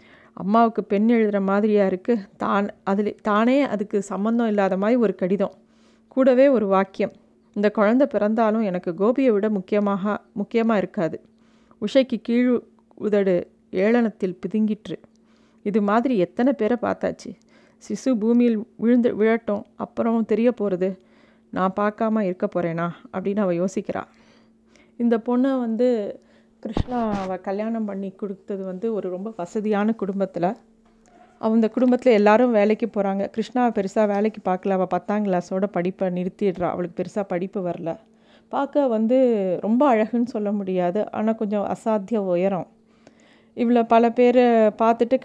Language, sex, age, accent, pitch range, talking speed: Tamil, female, 30-49, native, 195-230 Hz, 125 wpm